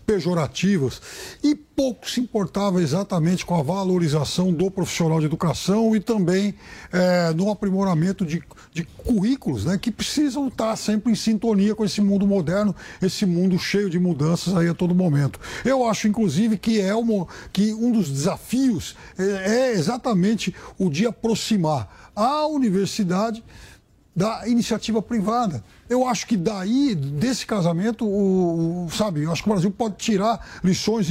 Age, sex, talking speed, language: 60-79, male, 150 wpm, Portuguese